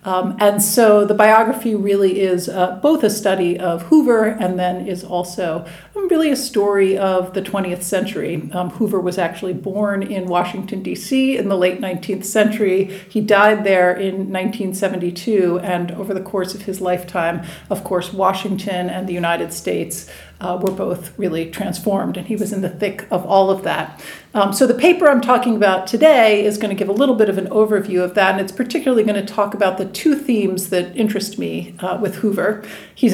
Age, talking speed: 50-69, 195 wpm